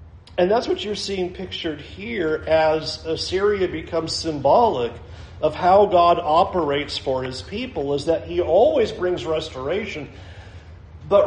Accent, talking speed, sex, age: American, 135 wpm, male, 40-59